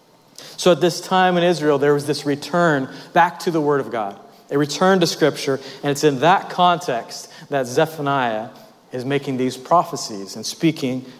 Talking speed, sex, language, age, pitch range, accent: 175 wpm, male, English, 40-59, 140-185 Hz, American